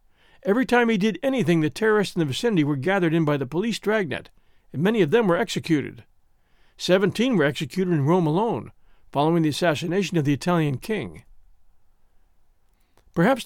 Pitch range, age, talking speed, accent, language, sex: 155-215 Hz, 60-79, 165 wpm, American, English, male